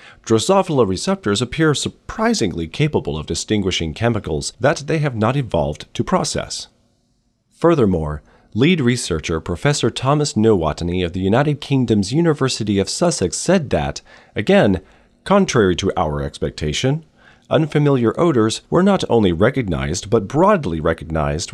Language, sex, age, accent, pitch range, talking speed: English, male, 40-59, American, 95-145 Hz, 125 wpm